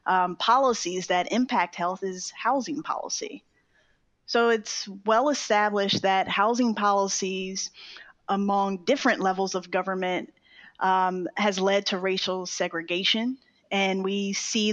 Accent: American